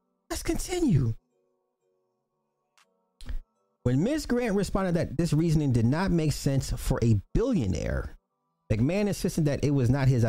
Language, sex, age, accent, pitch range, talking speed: English, male, 40-59, American, 110-150 Hz, 135 wpm